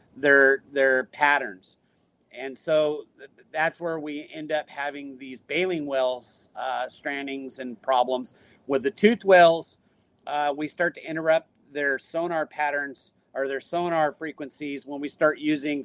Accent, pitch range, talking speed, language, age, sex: American, 130-150 Hz, 145 wpm, English, 40-59, male